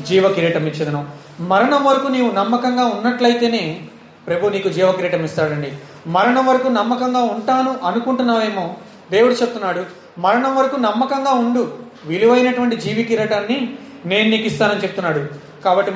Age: 30-49